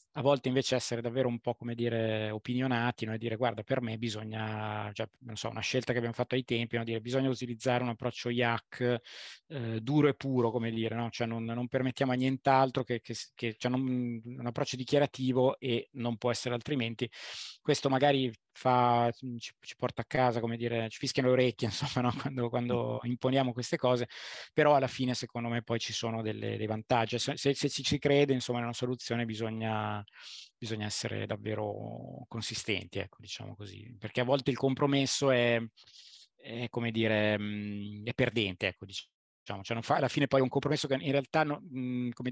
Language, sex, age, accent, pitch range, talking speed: Italian, male, 20-39, native, 115-130 Hz, 195 wpm